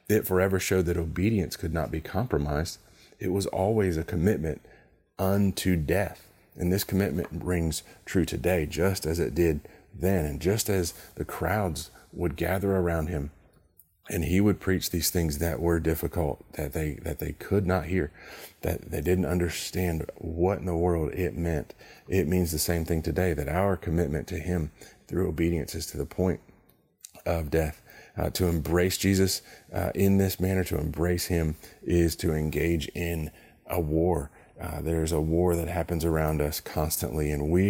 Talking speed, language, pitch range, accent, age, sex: 170 wpm, English, 80-90 Hz, American, 30-49, male